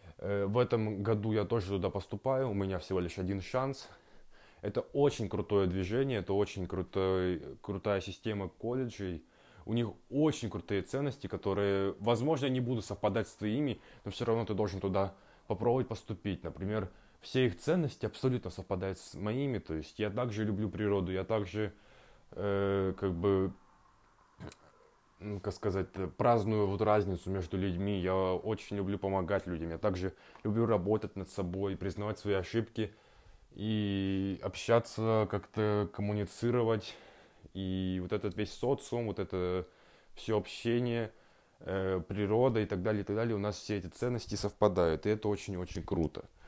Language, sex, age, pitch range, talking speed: Russian, male, 20-39, 95-110 Hz, 145 wpm